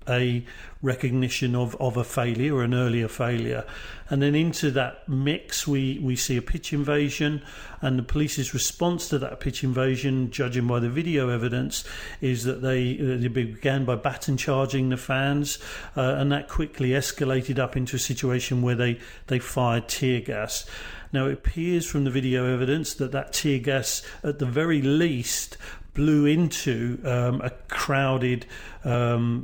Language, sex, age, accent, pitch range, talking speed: English, male, 40-59, British, 125-145 Hz, 165 wpm